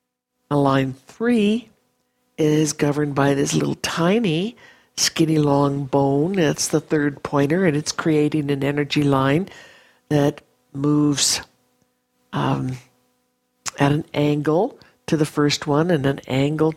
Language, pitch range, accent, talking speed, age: English, 140-165 Hz, American, 120 wpm, 60-79